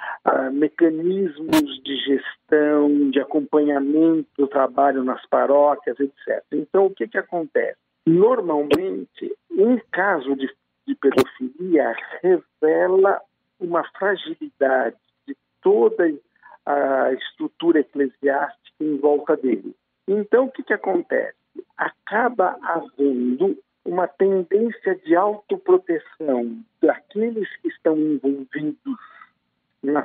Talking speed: 95 wpm